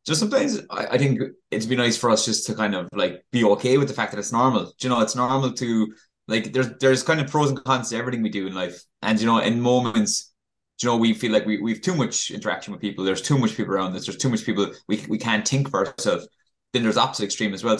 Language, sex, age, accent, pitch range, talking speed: English, male, 20-39, Irish, 105-125 Hz, 280 wpm